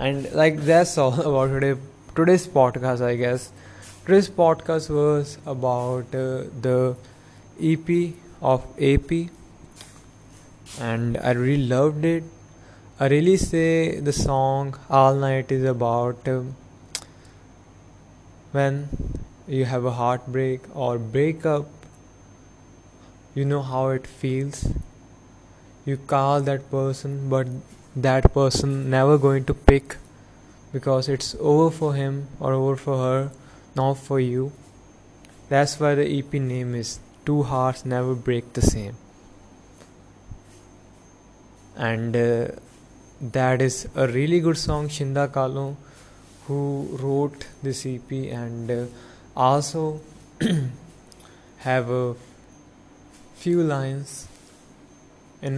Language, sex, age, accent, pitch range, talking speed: English, male, 20-39, Indian, 120-140 Hz, 110 wpm